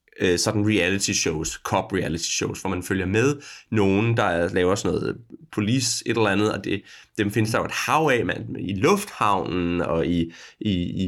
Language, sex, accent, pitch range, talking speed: Danish, male, native, 105-150 Hz, 185 wpm